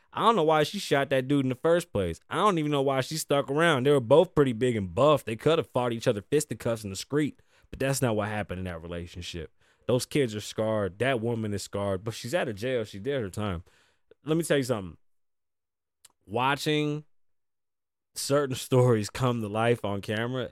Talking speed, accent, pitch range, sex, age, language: 220 wpm, American, 105-160 Hz, male, 20-39, English